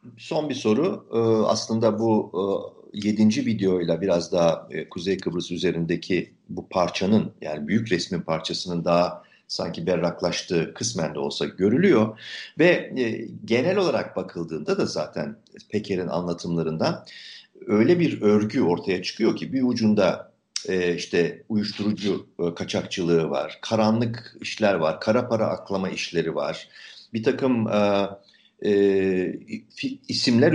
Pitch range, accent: 85-115 Hz, native